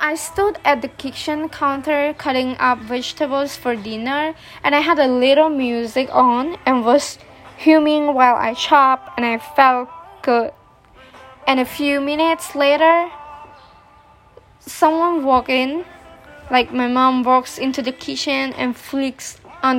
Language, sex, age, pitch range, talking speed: English, female, 20-39, 250-310 Hz, 140 wpm